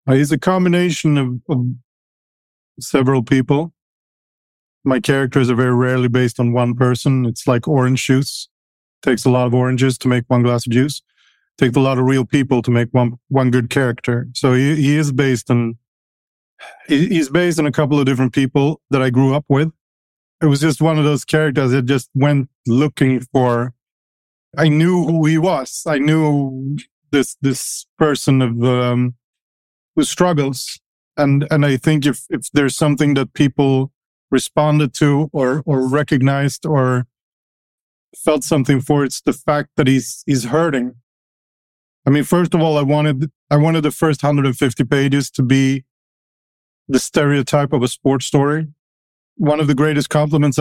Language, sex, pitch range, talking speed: English, male, 125-150 Hz, 165 wpm